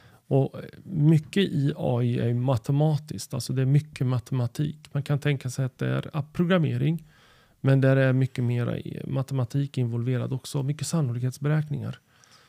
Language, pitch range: Swedish, 120-145 Hz